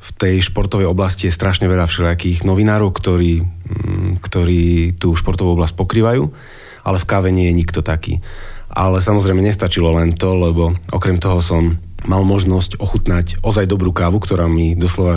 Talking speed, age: 160 wpm, 30-49